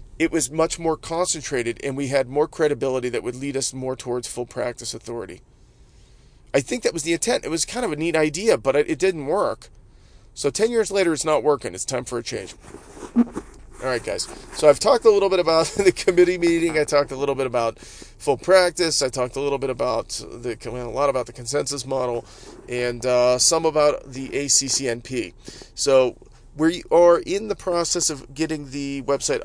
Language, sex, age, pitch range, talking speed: English, male, 40-59, 120-155 Hz, 200 wpm